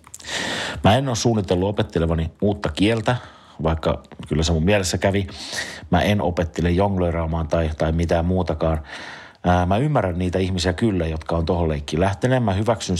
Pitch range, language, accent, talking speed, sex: 80-95 Hz, Finnish, native, 155 wpm, male